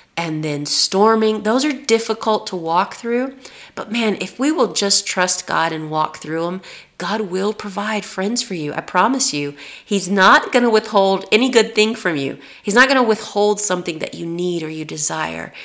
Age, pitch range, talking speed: 30-49, 165-210 Hz, 200 wpm